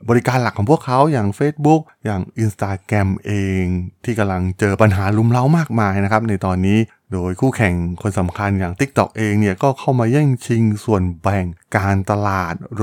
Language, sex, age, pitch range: Thai, male, 20-39, 95-125 Hz